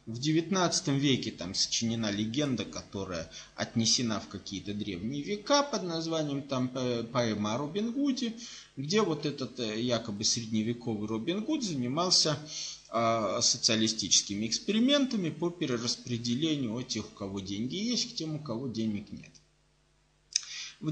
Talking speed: 125 wpm